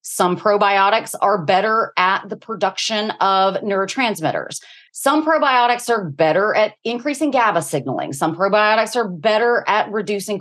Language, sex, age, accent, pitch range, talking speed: English, female, 30-49, American, 185-245 Hz, 135 wpm